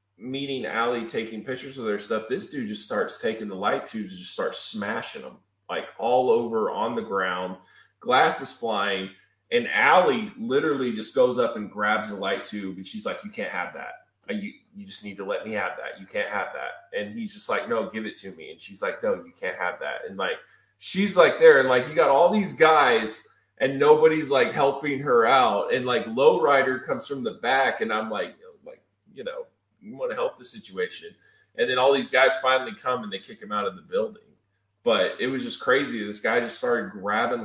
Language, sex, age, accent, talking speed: English, male, 20-39, American, 225 wpm